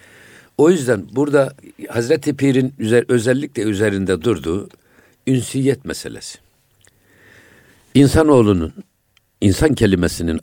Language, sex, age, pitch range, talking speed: Turkish, male, 60-79, 95-120 Hz, 75 wpm